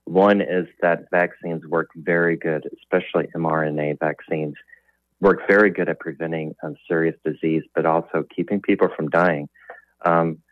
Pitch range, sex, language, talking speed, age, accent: 80-95 Hz, male, English, 145 wpm, 30-49, American